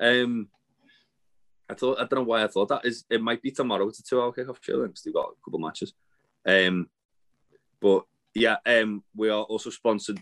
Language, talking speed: English, 210 wpm